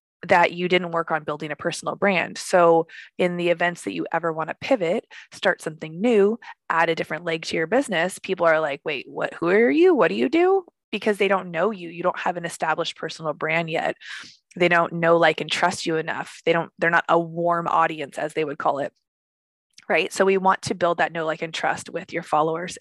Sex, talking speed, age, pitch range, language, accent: female, 230 wpm, 20-39, 165-190 Hz, English, American